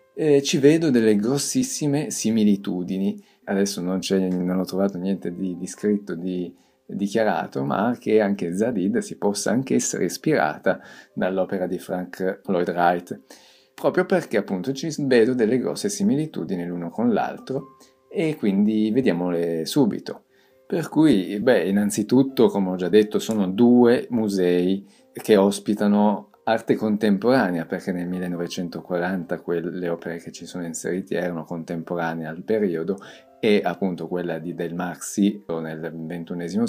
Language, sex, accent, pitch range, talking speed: Italian, male, native, 85-110 Hz, 135 wpm